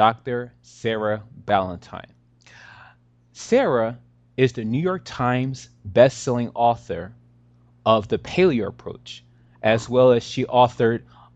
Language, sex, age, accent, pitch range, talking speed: English, male, 20-39, American, 110-125 Hz, 105 wpm